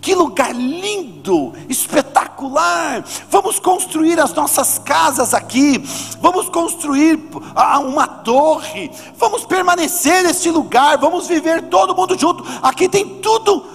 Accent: Brazilian